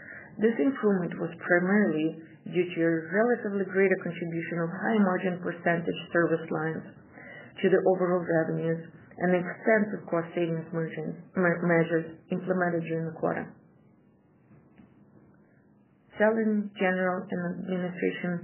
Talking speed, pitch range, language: 105 wpm, 165-190 Hz, English